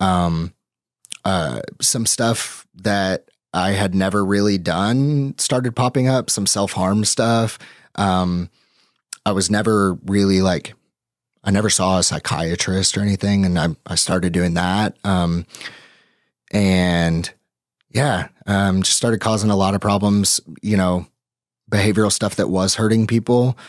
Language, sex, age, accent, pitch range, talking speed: English, male, 30-49, American, 90-105 Hz, 135 wpm